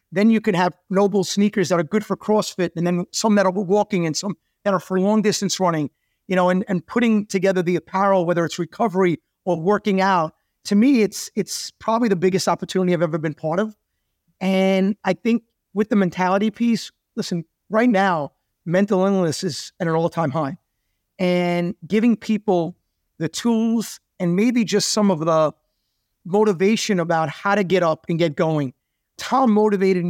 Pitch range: 175-210 Hz